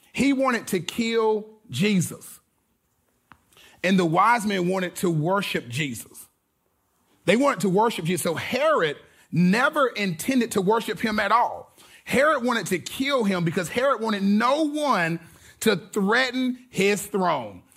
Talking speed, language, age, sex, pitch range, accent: 140 wpm, English, 30-49, male, 170-235 Hz, American